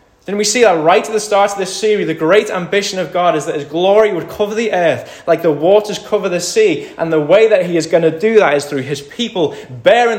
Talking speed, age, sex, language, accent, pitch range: 265 wpm, 20-39, male, English, British, 125-205 Hz